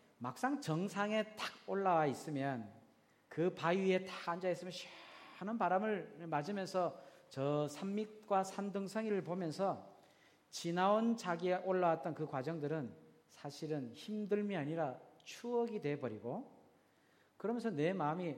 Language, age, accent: Korean, 40-59, native